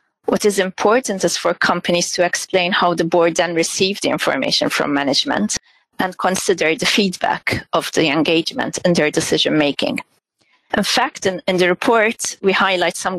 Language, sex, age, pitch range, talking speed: English, female, 30-49, 165-195 Hz, 165 wpm